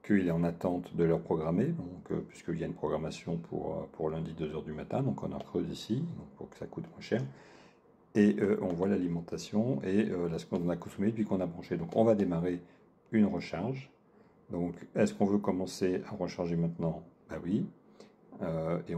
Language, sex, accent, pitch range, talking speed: French, male, French, 85-95 Hz, 210 wpm